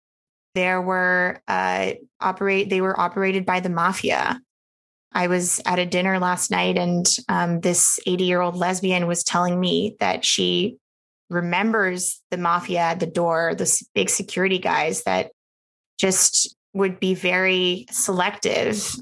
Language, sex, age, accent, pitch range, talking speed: English, female, 20-39, American, 175-205 Hz, 140 wpm